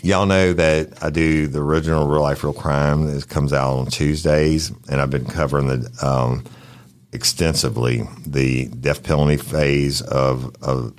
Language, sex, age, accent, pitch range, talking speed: English, male, 50-69, American, 65-80 Hz, 160 wpm